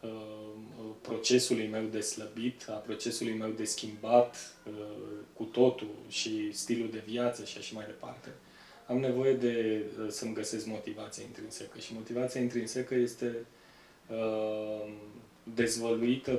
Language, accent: Romanian, native